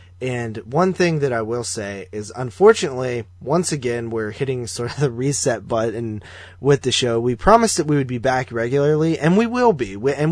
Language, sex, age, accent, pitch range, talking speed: English, male, 20-39, American, 105-145 Hz, 200 wpm